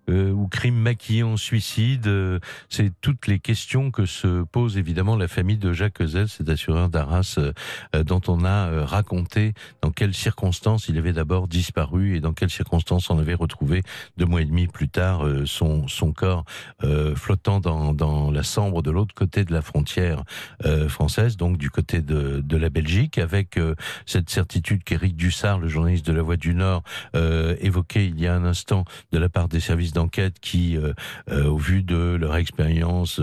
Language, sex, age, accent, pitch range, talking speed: French, male, 60-79, French, 80-100 Hz, 195 wpm